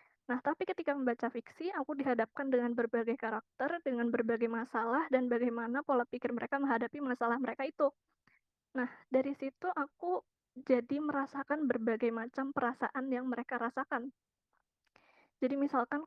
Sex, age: female, 20-39